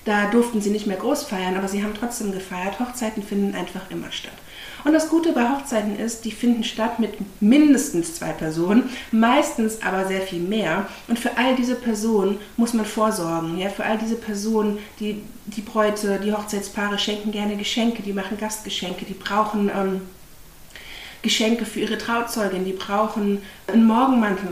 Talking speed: 170 wpm